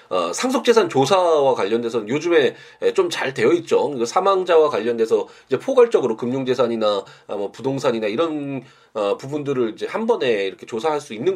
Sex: male